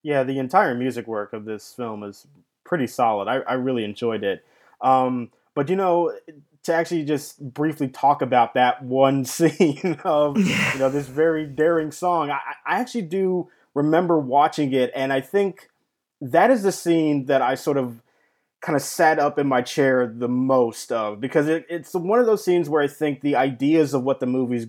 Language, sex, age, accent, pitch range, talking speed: English, male, 20-39, American, 130-160 Hz, 195 wpm